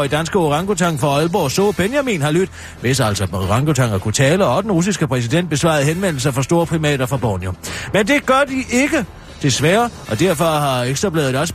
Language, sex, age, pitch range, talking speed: Danish, male, 40-59, 140-195 Hz, 200 wpm